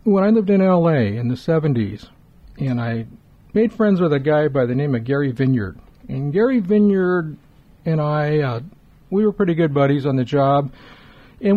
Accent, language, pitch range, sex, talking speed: American, English, 135-180 Hz, male, 185 wpm